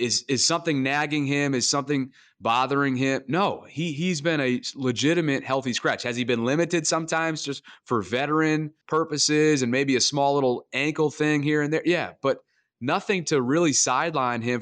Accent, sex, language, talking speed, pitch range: American, male, English, 175 wpm, 125-155 Hz